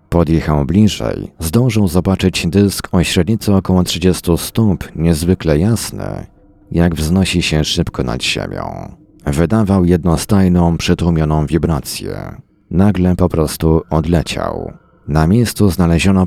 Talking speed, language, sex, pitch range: 105 wpm, Polish, male, 80-95 Hz